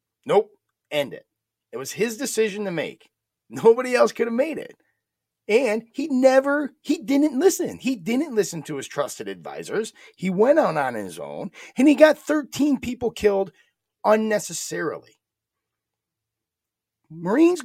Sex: male